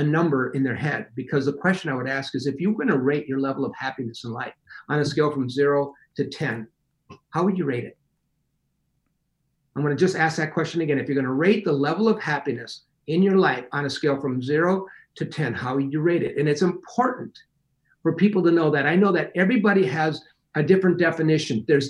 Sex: male